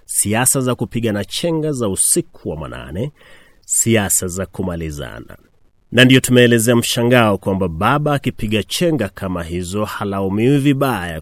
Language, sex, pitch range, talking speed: Swahili, male, 95-120 Hz, 125 wpm